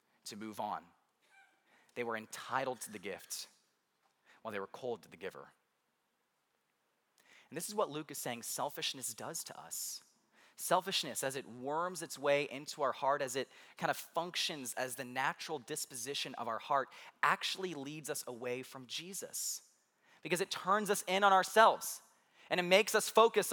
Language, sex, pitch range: English, male, 135-190 Hz